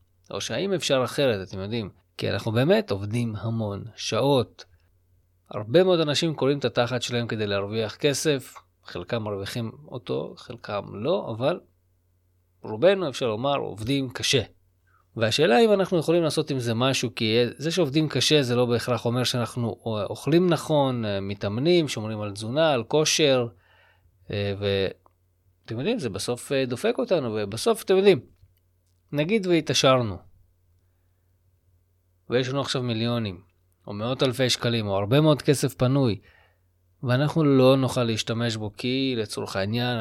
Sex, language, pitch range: male, Hebrew, 95-145 Hz